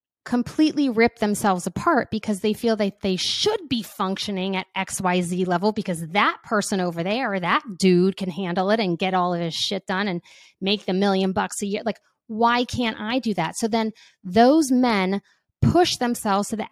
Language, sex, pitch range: English, female, 190-265 Hz